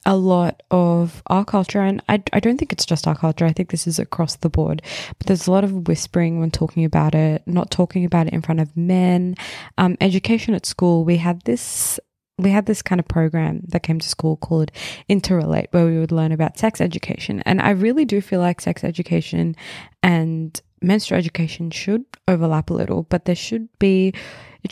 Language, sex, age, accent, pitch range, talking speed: English, female, 20-39, Australian, 160-185 Hz, 205 wpm